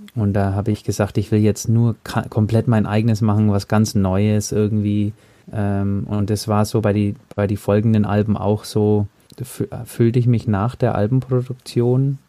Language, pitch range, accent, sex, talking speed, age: German, 105-120 Hz, German, male, 170 wpm, 20-39